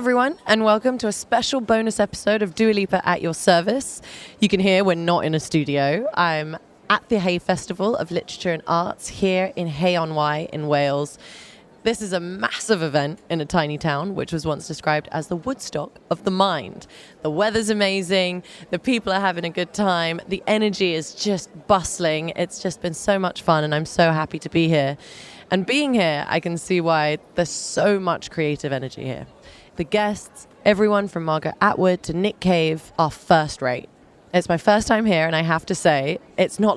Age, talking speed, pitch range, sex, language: 20-39, 195 wpm, 160-205 Hz, female, English